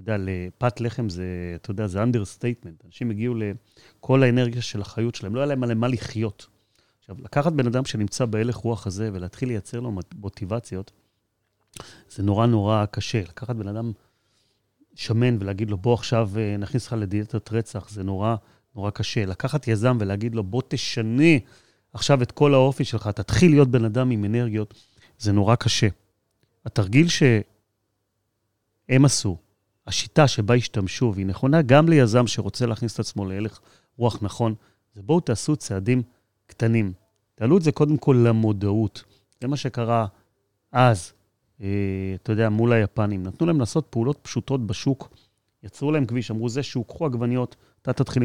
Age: 30-49